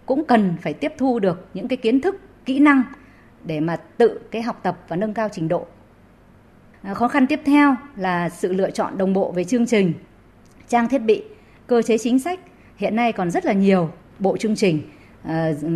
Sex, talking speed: female, 205 wpm